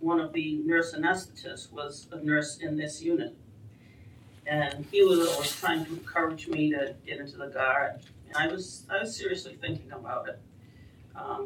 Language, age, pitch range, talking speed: English, 40-59, 145-185 Hz, 185 wpm